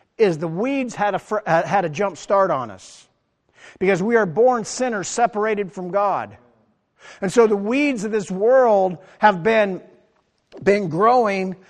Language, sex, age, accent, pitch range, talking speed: English, male, 50-69, American, 160-205 Hz, 155 wpm